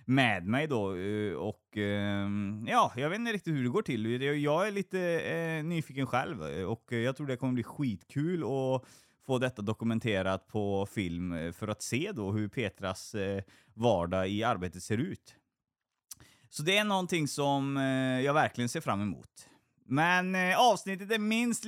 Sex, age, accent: male, 20-39, native